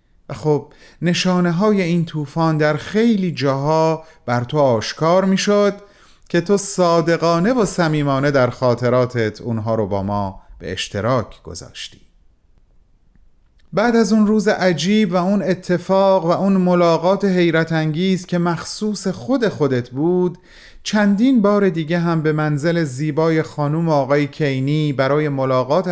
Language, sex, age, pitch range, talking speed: Persian, male, 30-49, 125-180 Hz, 130 wpm